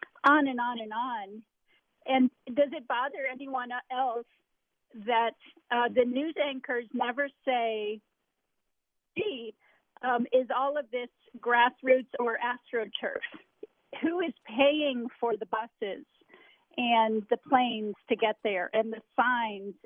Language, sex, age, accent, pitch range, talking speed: English, female, 40-59, American, 220-260 Hz, 125 wpm